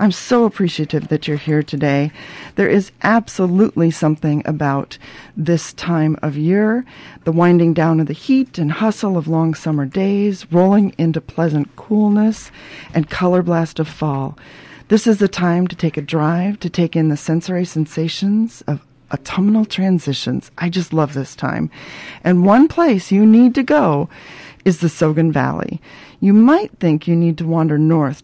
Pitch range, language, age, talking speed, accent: 150-185 Hz, English, 40-59, 165 wpm, American